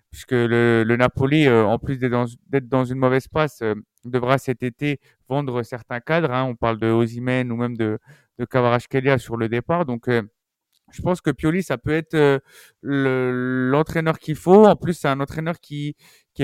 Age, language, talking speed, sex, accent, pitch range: 30-49, French, 200 wpm, male, French, 120-145 Hz